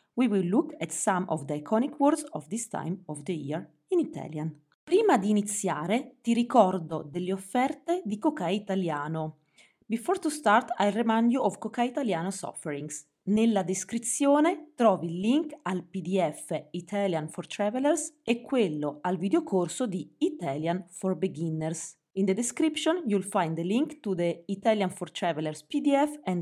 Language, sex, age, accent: English, female, 30-49, Italian